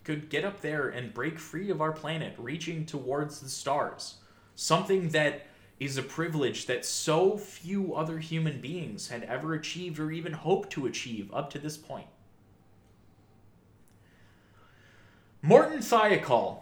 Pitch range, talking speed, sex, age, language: 105-145 Hz, 140 wpm, male, 20-39, English